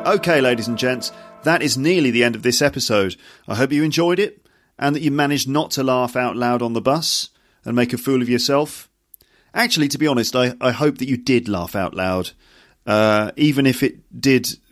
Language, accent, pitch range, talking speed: English, British, 115-145 Hz, 215 wpm